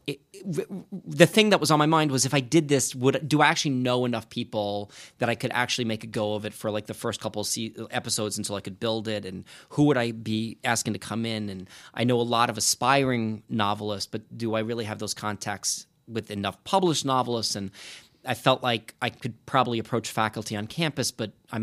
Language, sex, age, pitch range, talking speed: English, male, 30-49, 110-135 Hz, 235 wpm